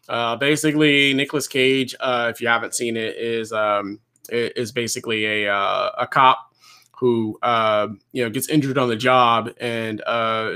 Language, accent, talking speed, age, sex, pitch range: English, American, 165 wpm, 20-39, male, 115-135 Hz